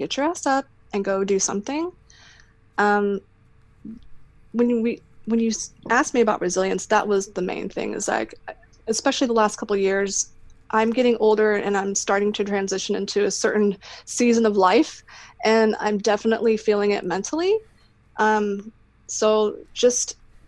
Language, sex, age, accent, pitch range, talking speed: English, female, 20-39, American, 180-225 Hz, 155 wpm